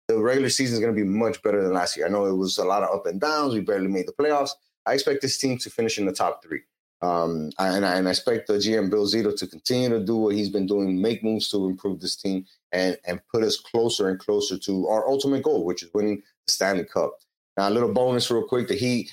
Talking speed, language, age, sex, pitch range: 265 wpm, English, 30-49, male, 100-125 Hz